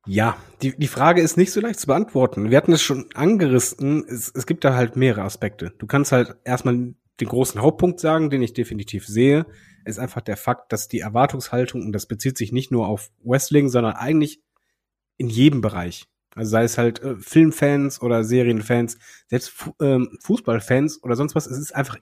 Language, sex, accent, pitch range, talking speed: German, male, German, 115-145 Hz, 195 wpm